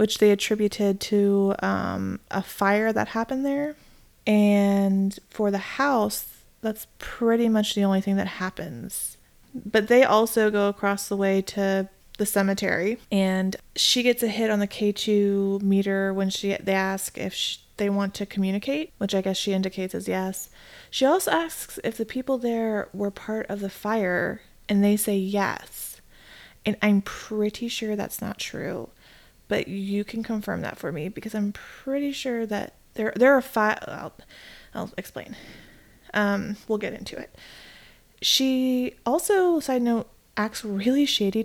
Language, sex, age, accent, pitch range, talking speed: English, female, 20-39, American, 195-230 Hz, 160 wpm